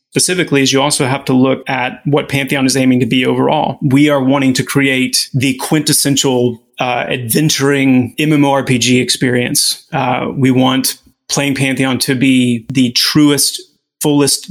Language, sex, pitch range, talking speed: English, male, 125-140 Hz, 150 wpm